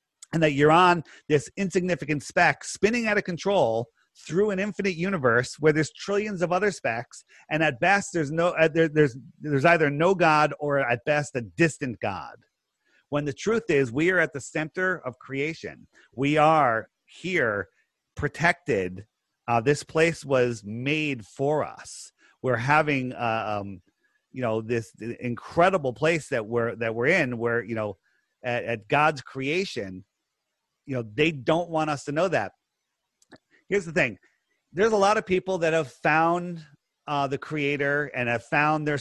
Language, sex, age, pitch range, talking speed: English, male, 30-49, 130-170 Hz, 165 wpm